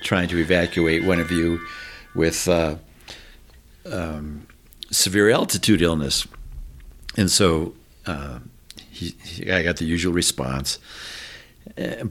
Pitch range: 80-100 Hz